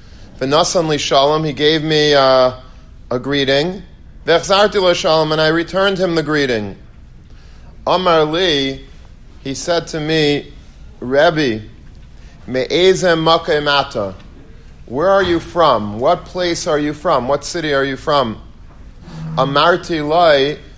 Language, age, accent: English, 40-59, American